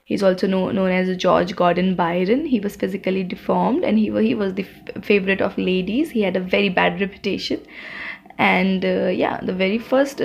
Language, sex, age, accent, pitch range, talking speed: English, female, 20-39, Indian, 190-215 Hz, 195 wpm